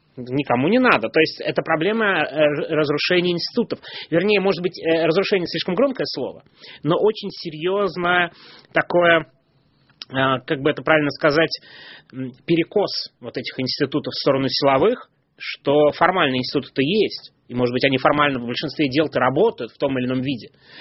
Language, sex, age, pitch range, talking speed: Russian, male, 20-39, 125-165 Hz, 145 wpm